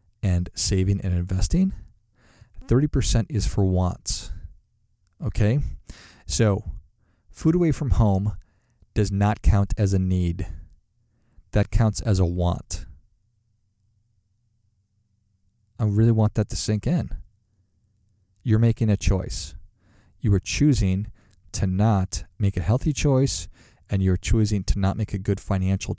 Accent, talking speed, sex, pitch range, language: American, 125 wpm, male, 95-110 Hz, English